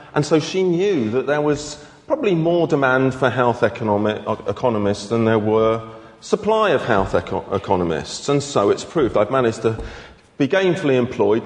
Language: English